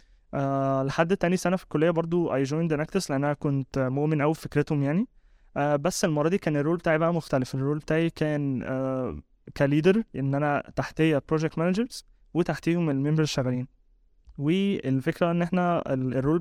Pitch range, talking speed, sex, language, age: 135-160 Hz, 160 wpm, male, Arabic, 20-39